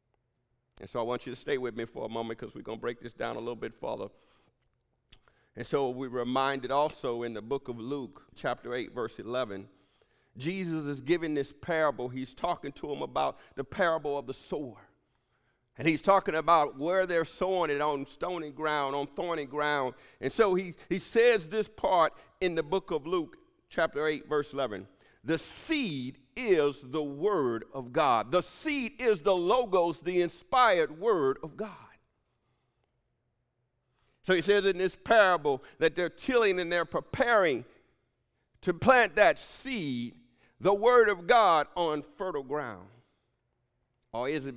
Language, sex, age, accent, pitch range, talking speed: English, male, 50-69, American, 125-185 Hz, 170 wpm